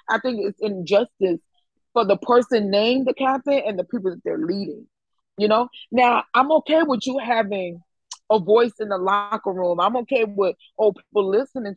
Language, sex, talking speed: English, female, 185 wpm